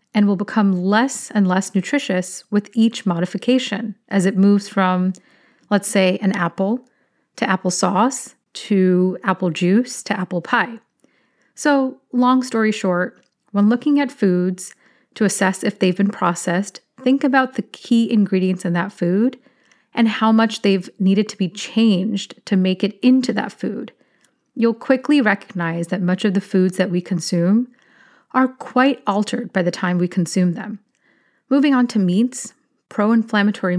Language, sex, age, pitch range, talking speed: English, female, 30-49, 185-230 Hz, 155 wpm